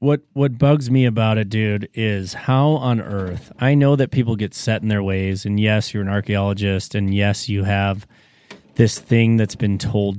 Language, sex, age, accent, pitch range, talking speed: English, male, 30-49, American, 100-125 Hz, 200 wpm